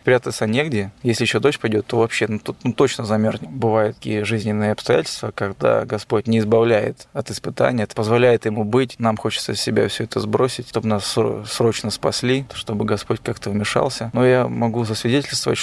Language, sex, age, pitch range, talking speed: Russian, male, 20-39, 110-125 Hz, 175 wpm